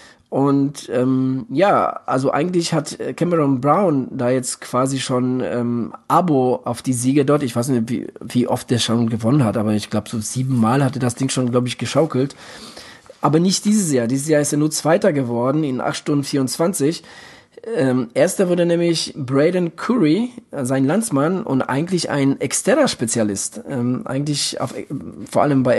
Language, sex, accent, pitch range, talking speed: German, male, German, 120-145 Hz, 175 wpm